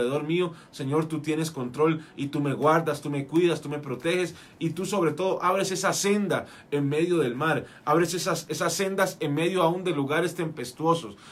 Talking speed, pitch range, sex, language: 190 wpm, 130-165 Hz, male, Spanish